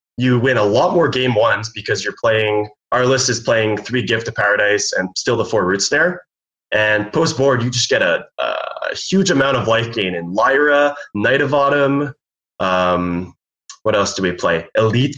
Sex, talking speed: male, 195 wpm